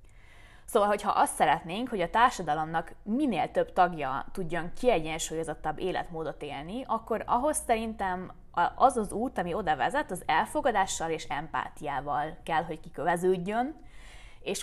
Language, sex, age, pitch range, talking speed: Hungarian, female, 20-39, 165-235 Hz, 125 wpm